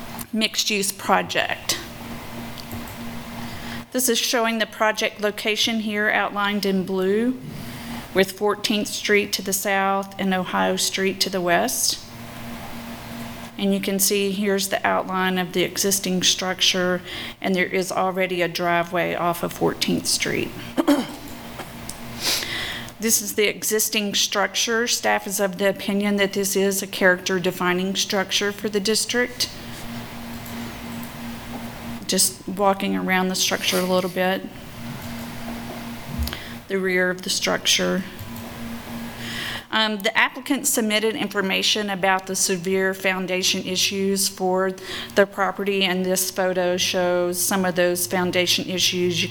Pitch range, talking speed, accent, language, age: 120-195 Hz, 125 wpm, American, English, 40-59